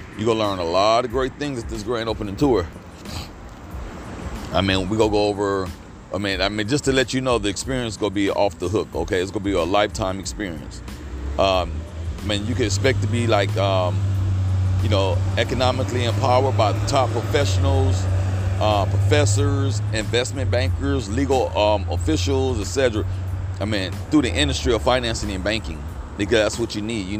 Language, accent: English, American